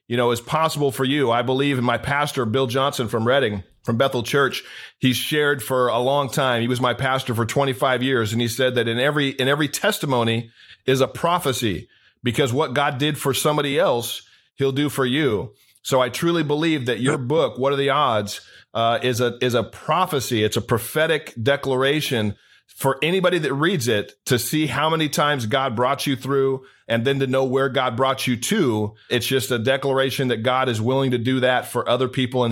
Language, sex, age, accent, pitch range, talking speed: English, male, 40-59, American, 125-150 Hz, 210 wpm